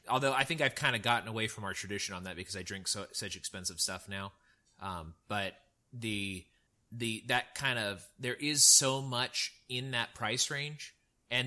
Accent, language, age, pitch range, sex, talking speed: American, English, 30-49, 100-120 Hz, male, 195 wpm